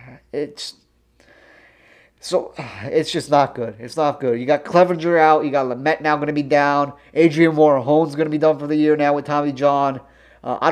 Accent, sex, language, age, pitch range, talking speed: American, male, English, 30-49, 130-155 Hz, 200 wpm